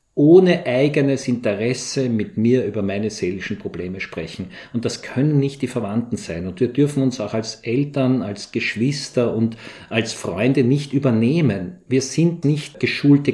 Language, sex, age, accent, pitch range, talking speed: German, male, 50-69, Austrian, 110-135 Hz, 155 wpm